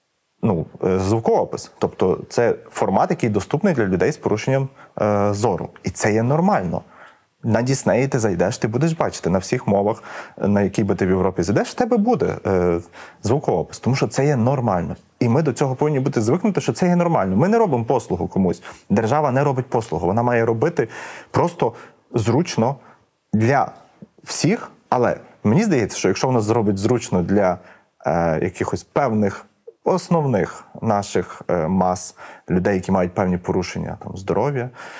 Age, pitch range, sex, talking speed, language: 30-49, 100-155 Hz, male, 160 wpm, Ukrainian